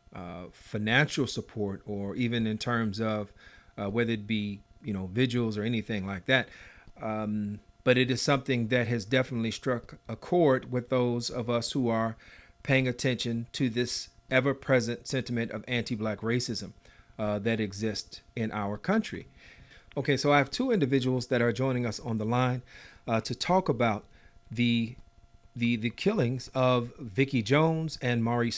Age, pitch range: 40-59, 110-130 Hz